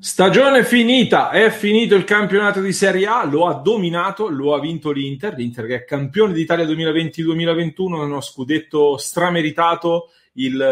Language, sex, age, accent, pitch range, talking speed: English, male, 30-49, Italian, 130-170 Hz, 145 wpm